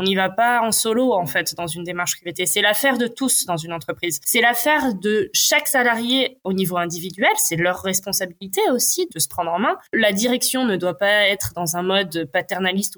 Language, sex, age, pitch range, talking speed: French, female, 20-39, 185-240 Hz, 215 wpm